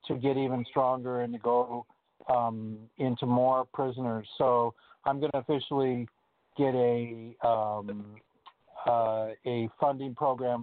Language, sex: English, male